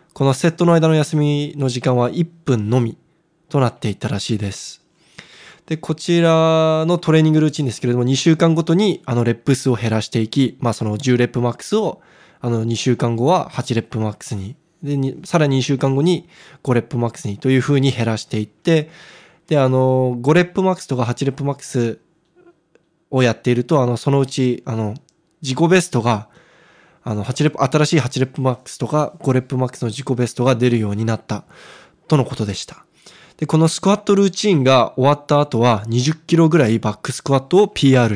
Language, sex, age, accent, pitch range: Japanese, male, 20-39, native, 120-160 Hz